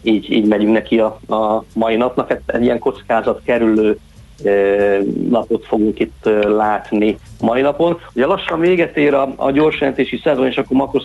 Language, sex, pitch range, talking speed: Hungarian, male, 110-135 Hz, 165 wpm